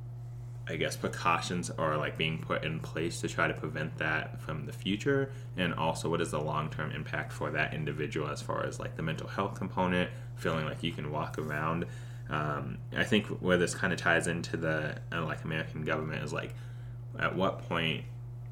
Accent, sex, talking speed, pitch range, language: American, male, 195 wpm, 110-130 Hz, English